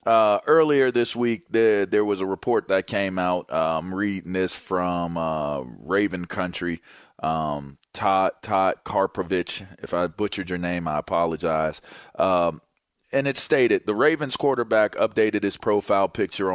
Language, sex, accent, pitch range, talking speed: English, male, American, 90-120 Hz, 145 wpm